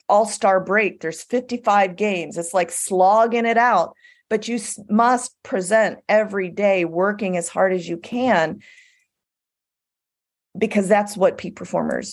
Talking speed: 135 wpm